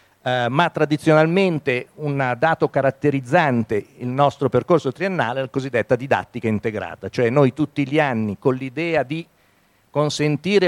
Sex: male